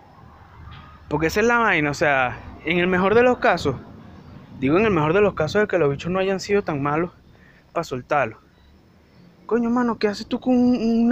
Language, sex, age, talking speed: Spanish, male, 20-39, 200 wpm